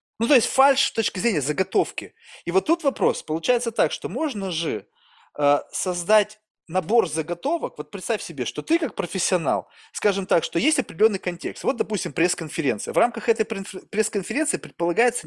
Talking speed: 165 wpm